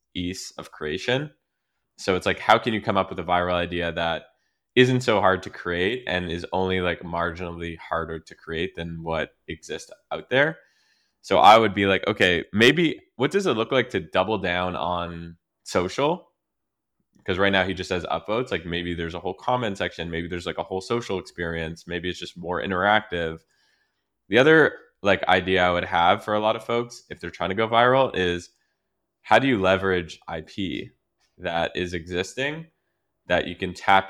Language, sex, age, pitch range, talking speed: English, male, 20-39, 85-95 Hz, 190 wpm